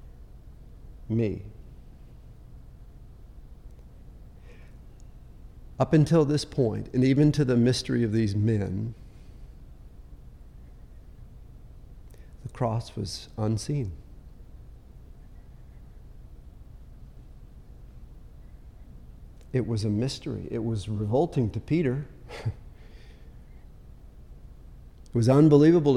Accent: American